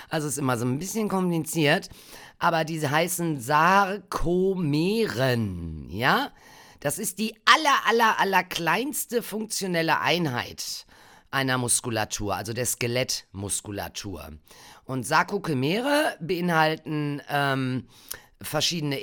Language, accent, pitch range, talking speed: German, German, 130-185 Hz, 100 wpm